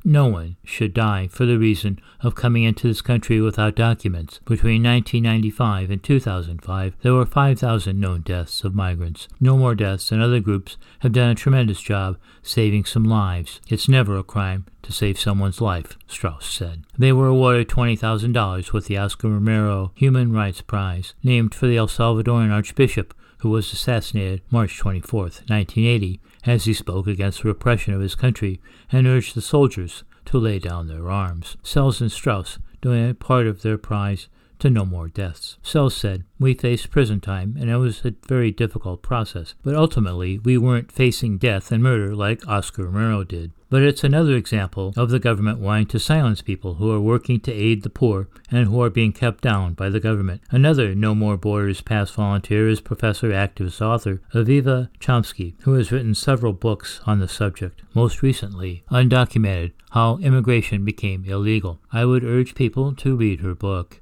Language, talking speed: English, 175 wpm